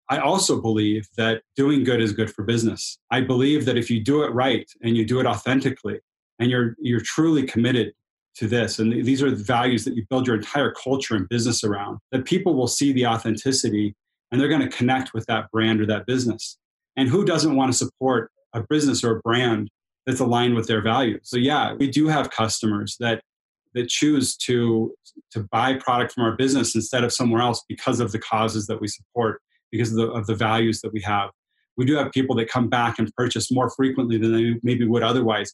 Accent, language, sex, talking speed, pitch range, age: American, English, male, 220 wpm, 110-130 Hz, 30-49